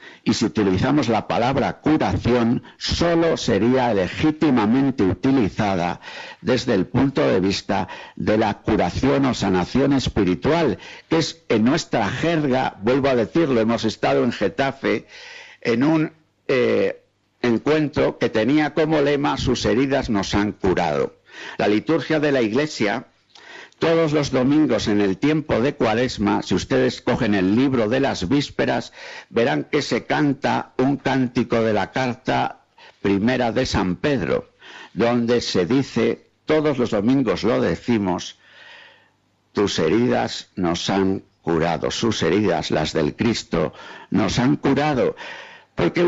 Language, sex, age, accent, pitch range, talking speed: Spanish, male, 60-79, Spanish, 105-150 Hz, 135 wpm